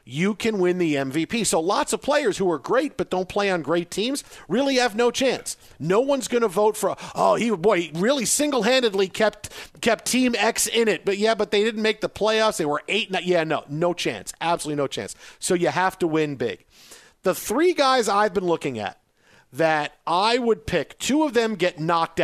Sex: male